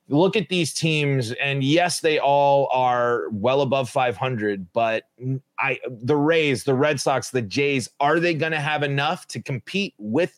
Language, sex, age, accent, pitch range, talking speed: English, male, 30-49, American, 120-150 Hz, 175 wpm